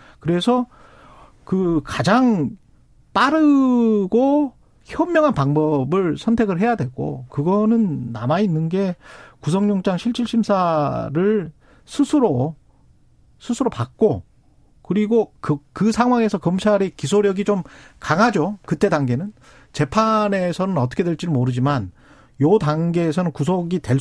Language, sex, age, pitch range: Korean, male, 40-59, 140-205 Hz